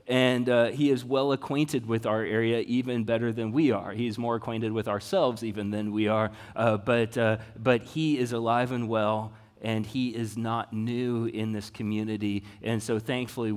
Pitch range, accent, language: 110-125 Hz, American, English